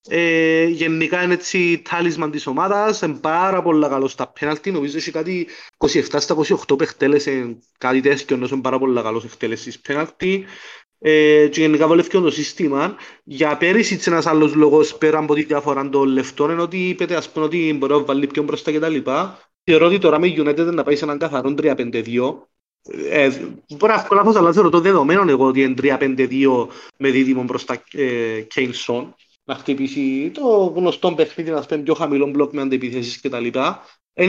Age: 30-49